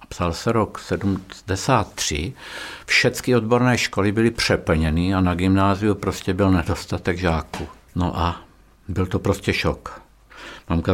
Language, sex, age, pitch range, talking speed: Czech, male, 60-79, 80-100 Hz, 125 wpm